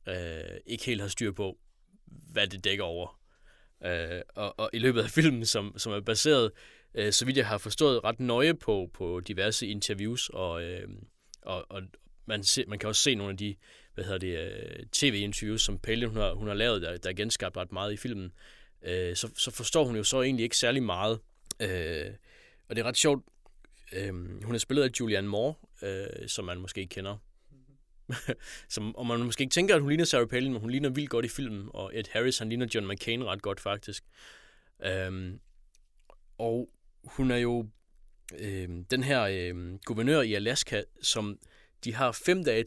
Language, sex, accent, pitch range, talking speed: Danish, male, native, 100-130 Hz, 200 wpm